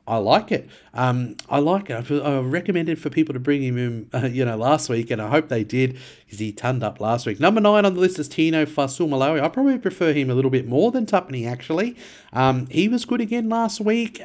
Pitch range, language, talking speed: 125-180 Hz, English, 250 wpm